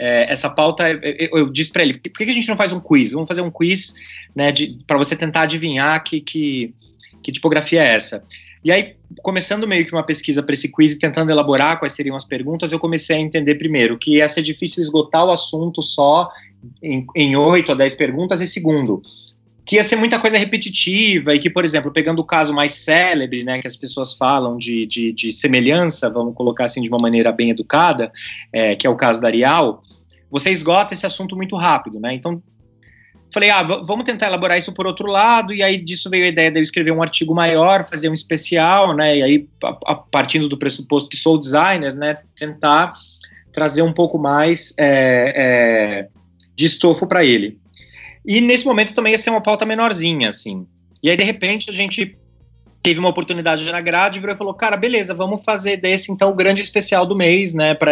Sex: male